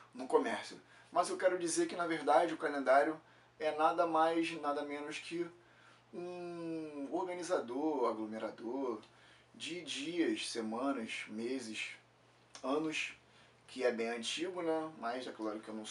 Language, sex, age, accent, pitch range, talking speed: Portuguese, male, 20-39, Brazilian, 115-165 Hz, 135 wpm